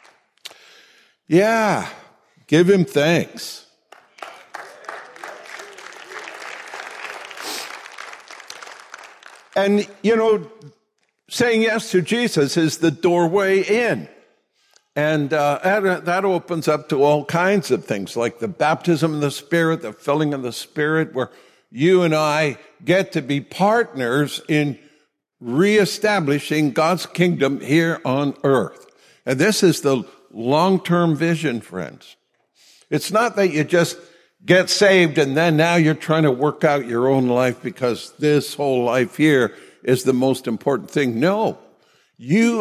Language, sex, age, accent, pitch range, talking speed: English, male, 60-79, American, 140-185 Hz, 125 wpm